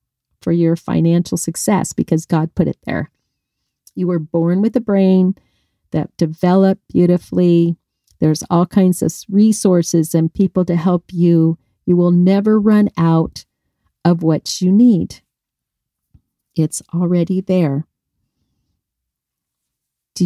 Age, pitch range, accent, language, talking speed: 50-69, 165-205 Hz, American, English, 120 wpm